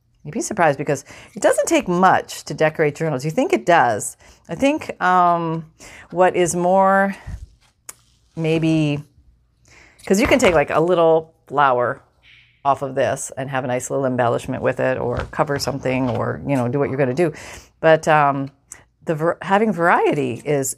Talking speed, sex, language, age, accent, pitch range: 170 wpm, female, English, 40-59, American, 140-170 Hz